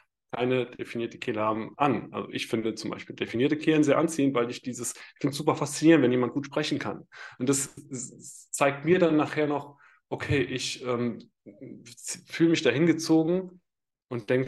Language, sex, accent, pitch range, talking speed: German, male, German, 120-145 Hz, 180 wpm